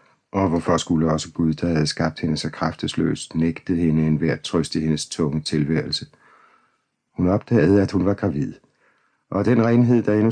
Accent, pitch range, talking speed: native, 80-100 Hz, 180 wpm